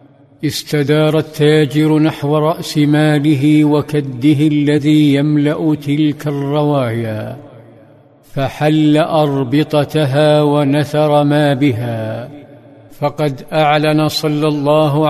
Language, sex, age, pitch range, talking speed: Arabic, male, 50-69, 145-155 Hz, 75 wpm